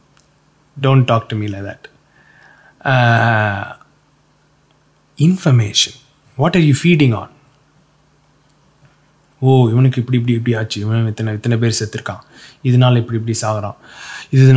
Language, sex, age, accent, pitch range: English, male, 20-39, Indian, 120-150 Hz